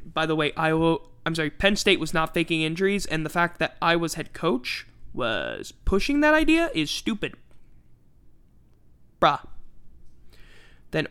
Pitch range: 155-195 Hz